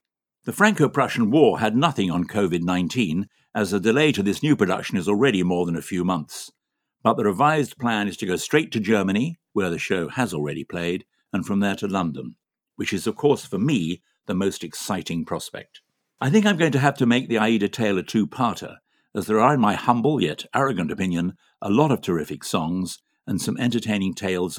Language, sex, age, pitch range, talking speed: English, male, 60-79, 85-110 Hz, 205 wpm